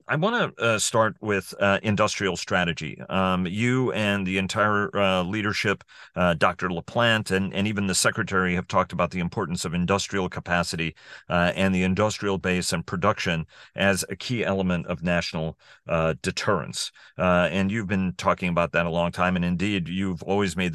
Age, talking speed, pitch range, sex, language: 40-59, 180 wpm, 85-100 Hz, male, English